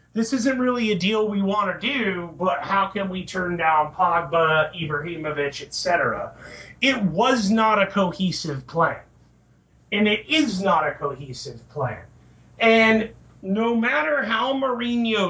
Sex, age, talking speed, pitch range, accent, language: male, 40-59, 140 wpm, 180-245 Hz, American, English